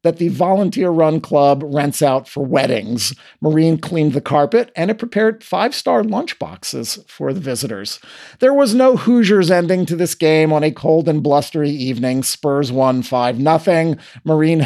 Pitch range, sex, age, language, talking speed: 135-180 Hz, male, 50-69, English, 170 wpm